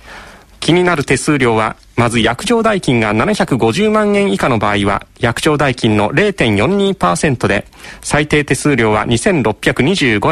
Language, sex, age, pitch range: Japanese, male, 40-59, 115-190 Hz